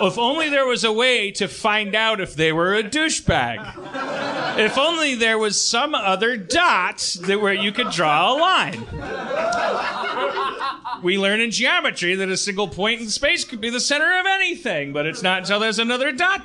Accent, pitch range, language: American, 145-225 Hz, English